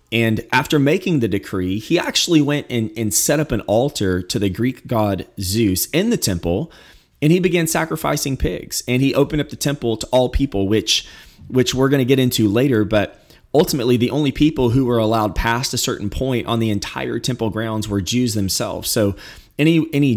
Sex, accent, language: male, American, English